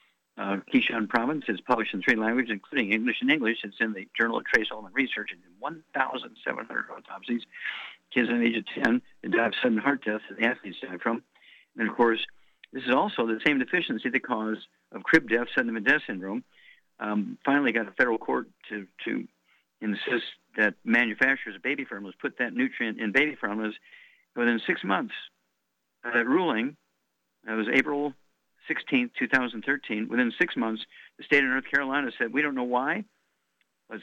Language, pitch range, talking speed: English, 110-130 Hz, 185 wpm